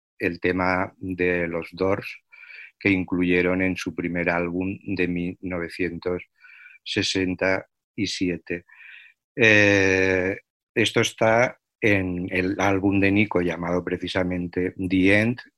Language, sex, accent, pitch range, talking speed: Spanish, male, Spanish, 90-95 Hz, 95 wpm